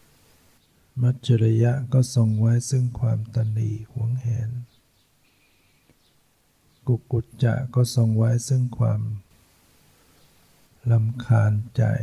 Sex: male